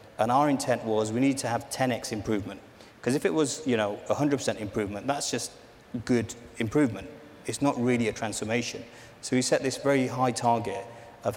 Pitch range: 110-125 Hz